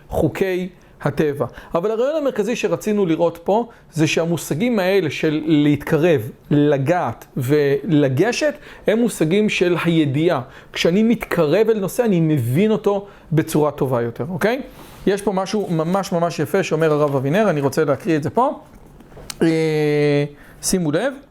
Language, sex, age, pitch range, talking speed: English, male, 40-59, 155-215 Hz, 130 wpm